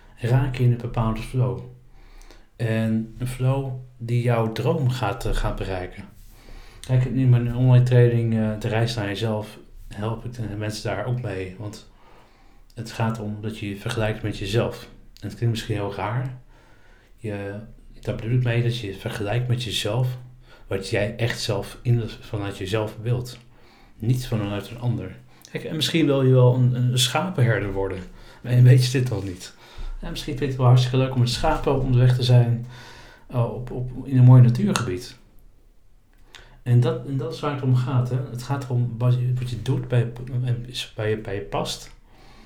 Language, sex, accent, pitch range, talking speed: Dutch, male, Dutch, 110-125 Hz, 190 wpm